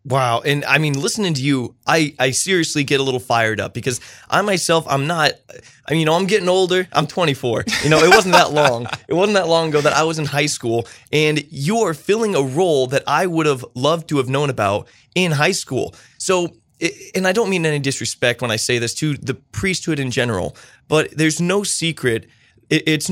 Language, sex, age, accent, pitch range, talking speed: English, male, 20-39, American, 125-160 Hz, 220 wpm